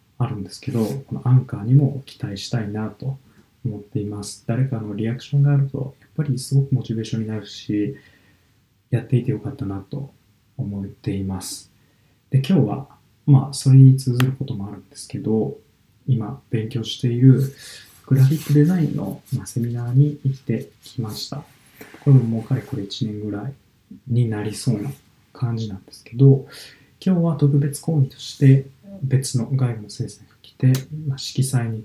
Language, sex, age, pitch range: Japanese, male, 20-39, 110-135 Hz